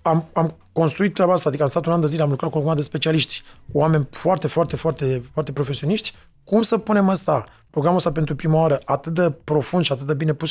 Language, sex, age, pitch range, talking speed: Romanian, male, 30-49, 145-195 Hz, 245 wpm